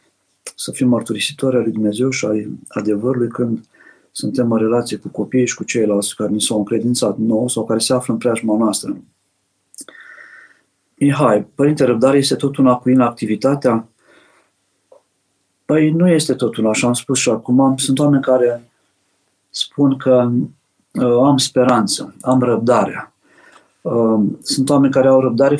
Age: 50-69